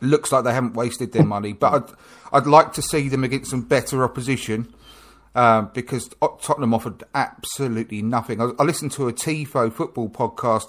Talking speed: 180 wpm